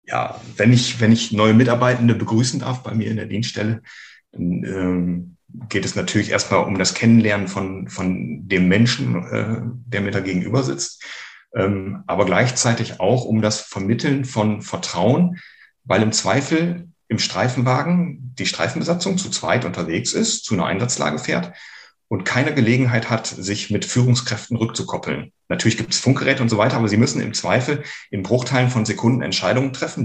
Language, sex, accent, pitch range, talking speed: German, male, German, 100-130 Hz, 165 wpm